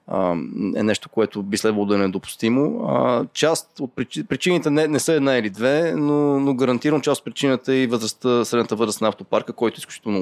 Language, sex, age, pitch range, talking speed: Bulgarian, male, 20-39, 115-135 Hz, 180 wpm